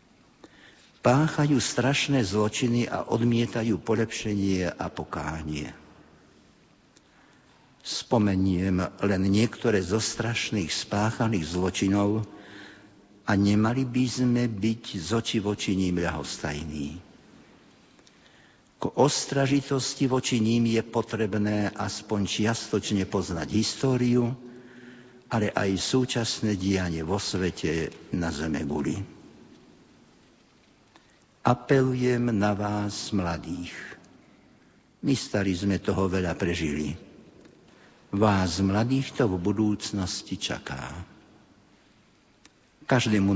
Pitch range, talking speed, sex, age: 95-120 Hz, 80 wpm, male, 60-79